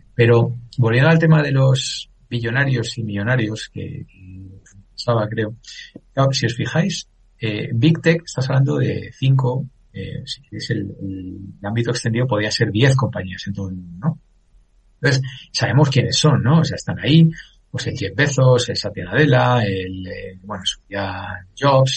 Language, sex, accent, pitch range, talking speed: Spanish, male, Spanish, 110-145 Hz, 170 wpm